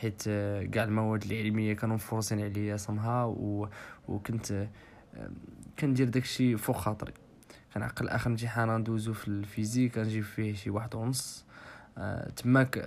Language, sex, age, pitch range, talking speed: Arabic, male, 20-39, 110-125 Hz, 125 wpm